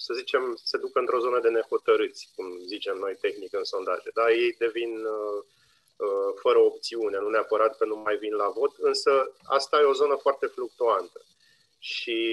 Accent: native